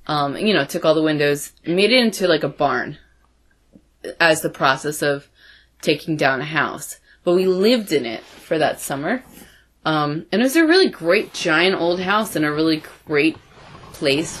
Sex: female